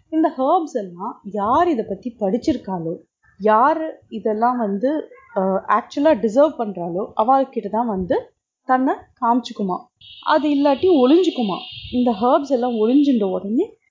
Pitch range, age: 205-290 Hz, 20-39